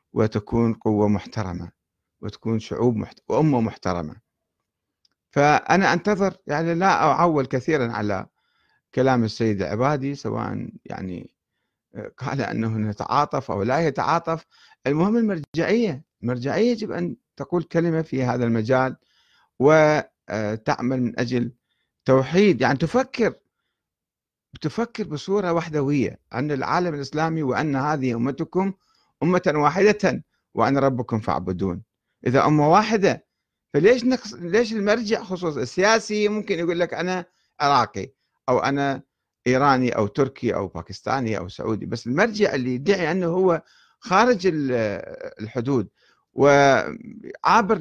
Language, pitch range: Arabic, 115-175 Hz